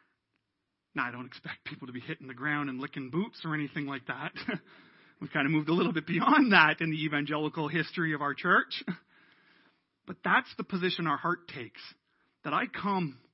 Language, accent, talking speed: English, American, 195 wpm